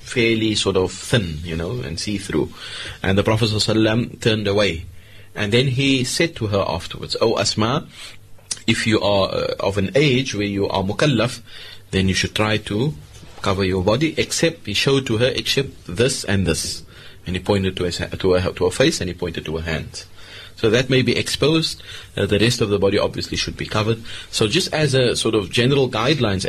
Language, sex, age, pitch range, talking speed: English, male, 30-49, 95-115 Hz, 195 wpm